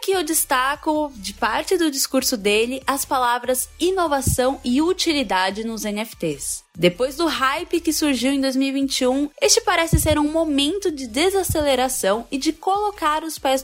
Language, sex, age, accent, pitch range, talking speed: Portuguese, female, 10-29, Brazilian, 230-320 Hz, 150 wpm